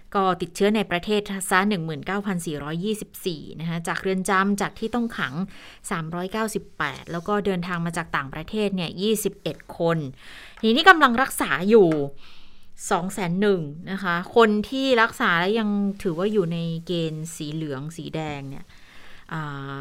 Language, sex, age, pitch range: Thai, female, 30-49, 165-200 Hz